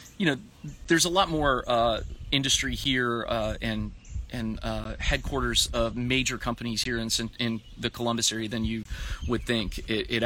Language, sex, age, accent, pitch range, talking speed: English, male, 30-49, American, 110-125 Hz, 170 wpm